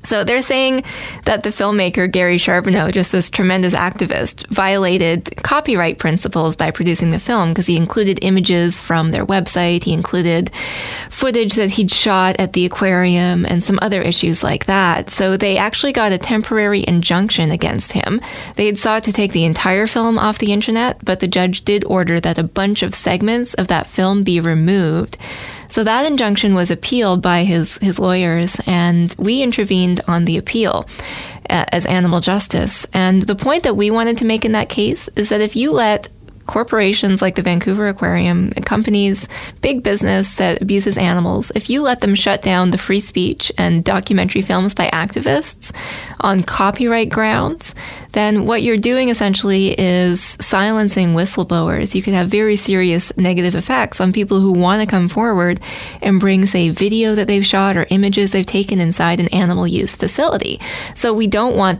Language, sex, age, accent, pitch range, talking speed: English, female, 10-29, American, 180-210 Hz, 175 wpm